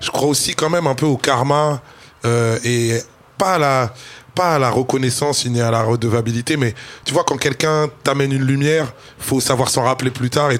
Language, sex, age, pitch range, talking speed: French, male, 20-39, 115-140 Hz, 210 wpm